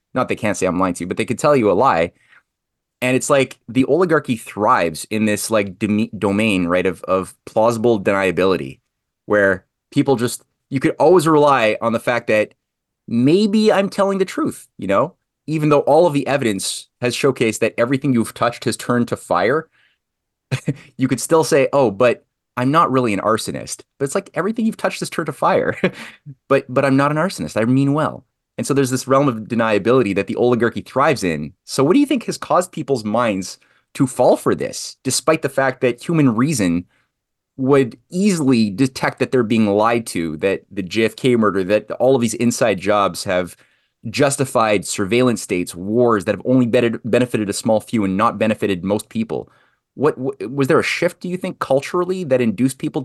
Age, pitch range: 20-39, 110-145 Hz